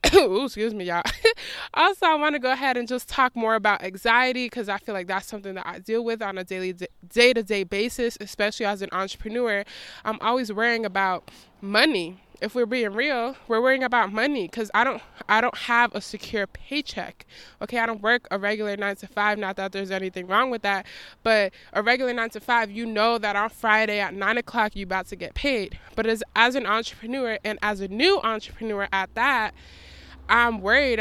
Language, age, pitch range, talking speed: English, 20-39, 200-240 Hz, 200 wpm